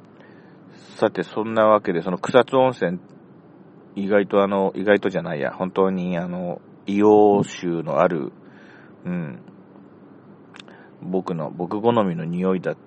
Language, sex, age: Japanese, male, 40-59